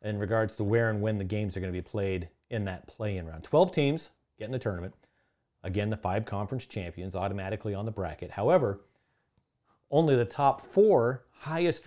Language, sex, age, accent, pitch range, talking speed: English, male, 40-59, American, 100-125 Hz, 190 wpm